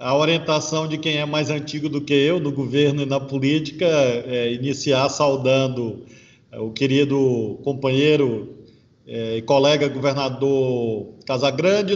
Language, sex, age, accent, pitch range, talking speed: Portuguese, male, 40-59, Brazilian, 145-200 Hz, 125 wpm